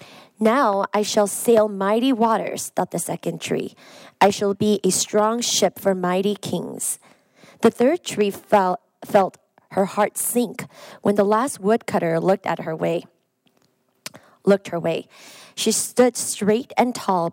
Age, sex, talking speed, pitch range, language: 20-39, female, 145 wpm, 190-225 Hz, English